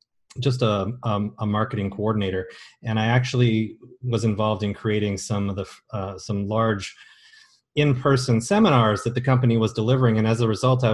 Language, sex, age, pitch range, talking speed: English, male, 30-49, 100-125 Hz, 175 wpm